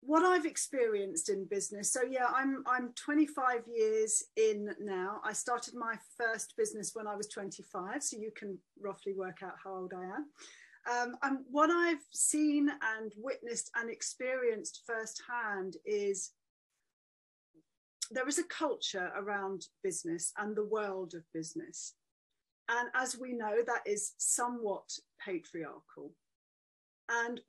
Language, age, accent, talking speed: English, 40-59, British, 140 wpm